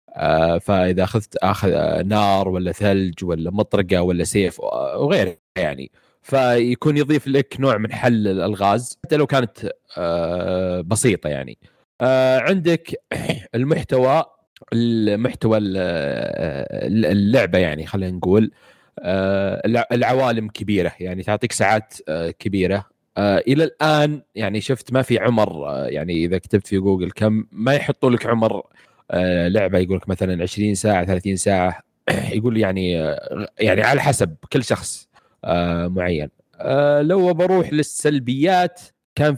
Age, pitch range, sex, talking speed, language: 30-49, 95-125 Hz, male, 120 wpm, Arabic